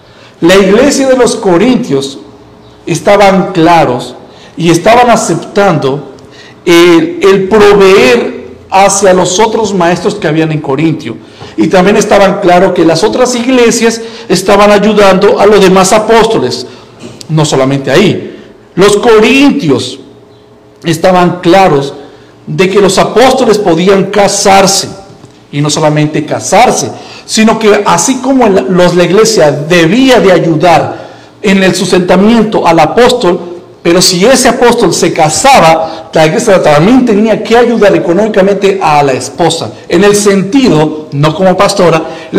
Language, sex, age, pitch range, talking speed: Spanish, male, 50-69, 160-215 Hz, 125 wpm